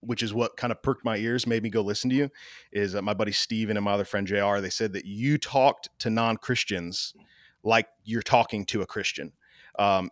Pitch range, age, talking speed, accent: 105-130 Hz, 30-49, 225 wpm, American